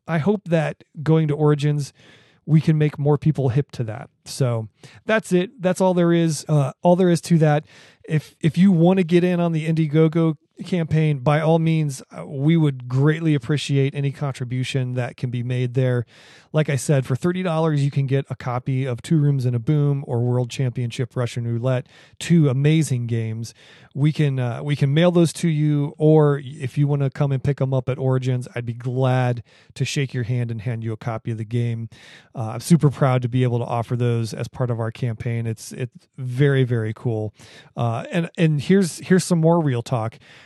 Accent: American